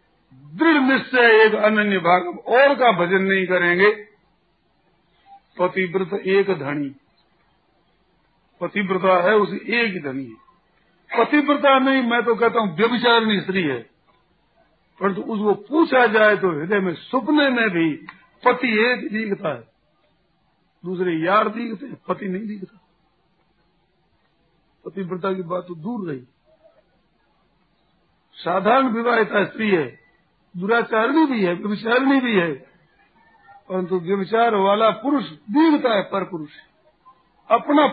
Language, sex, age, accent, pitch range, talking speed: Hindi, male, 50-69, native, 185-240 Hz, 120 wpm